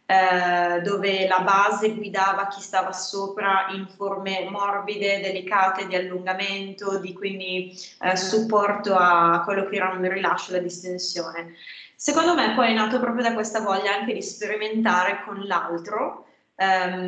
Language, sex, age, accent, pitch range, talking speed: Italian, female, 20-39, native, 185-220 Hz, 140 wpm